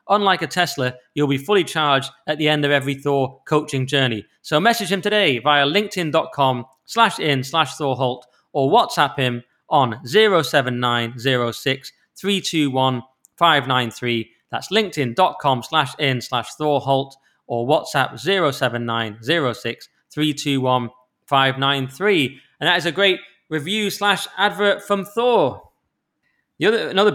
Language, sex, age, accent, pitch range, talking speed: English, male, 20-39, British, 125-155 Hz, 120 wpm